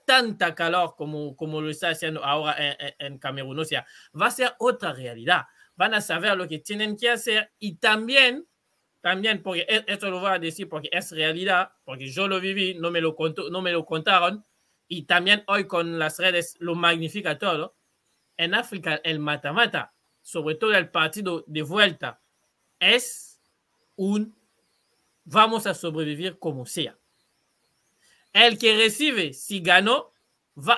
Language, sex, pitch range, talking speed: Spanish, male, 165-220 Hz, 160 wpm